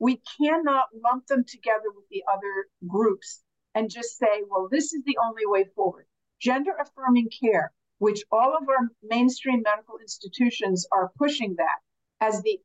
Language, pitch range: English, 210-270 Hz